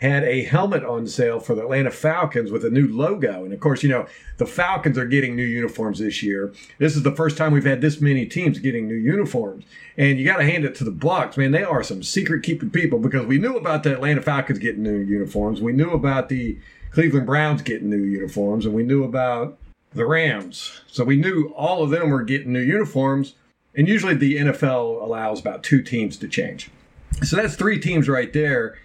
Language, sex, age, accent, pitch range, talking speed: English, male, 50-69, American, 120-155 Hz, 220 wpm